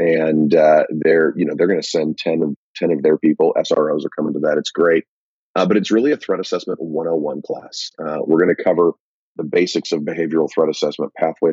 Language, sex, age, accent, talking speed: English, male, 40-59, American, 220 wpm